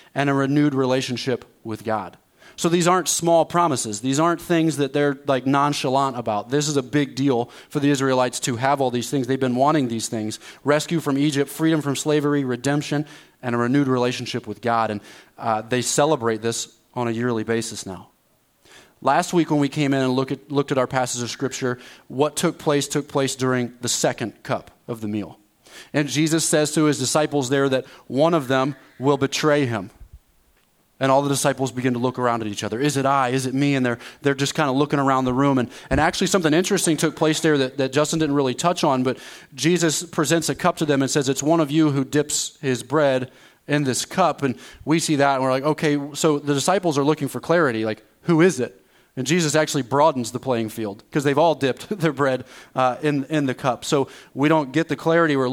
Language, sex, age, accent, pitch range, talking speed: English, male, 30-49, American, 125-155 Hz, 220 wpm